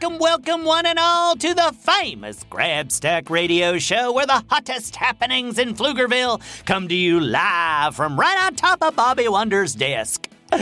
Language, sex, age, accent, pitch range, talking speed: English, male, 40-59, American, 165-250 Hz, 170 wpm